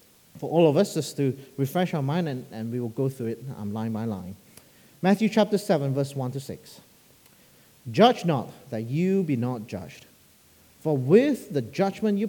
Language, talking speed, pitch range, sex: English, 190 wpm, 115-180 Hz, male